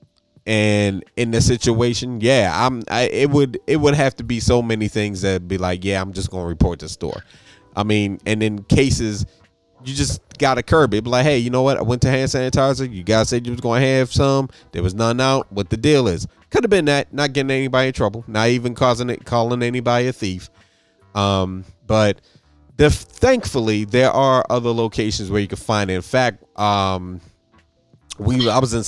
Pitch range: 95-125 Hz